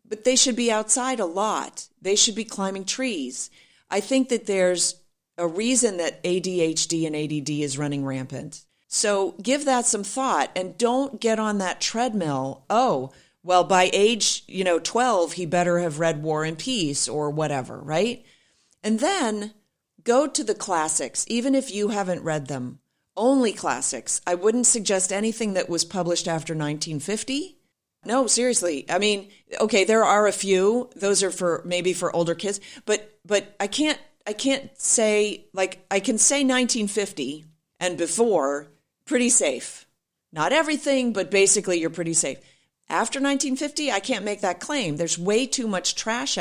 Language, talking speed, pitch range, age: English, 165 wpm, 165-230 Hz, 40-59